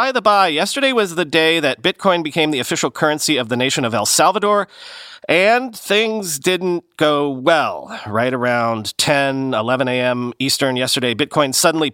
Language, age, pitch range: English, 40-59, 130-195 Hz